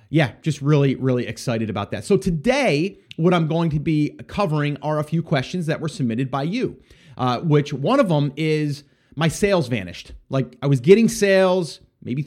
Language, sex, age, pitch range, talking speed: English, male, 30-49, 135-175 Hz, 190 wpm